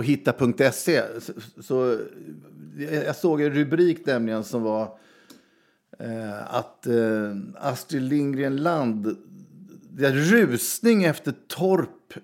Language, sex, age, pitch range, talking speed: Swedish, male, 50-69, 110-150 Hz, 95 wpm